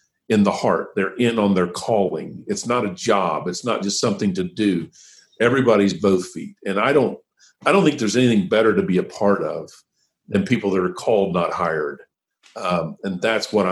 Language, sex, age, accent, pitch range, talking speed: English, male, 50-69, American, 95-110 Hz, 200 wpm